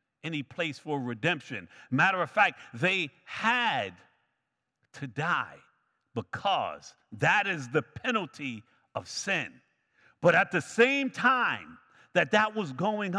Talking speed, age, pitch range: 125 wpm, 50-69, 125-185 Hz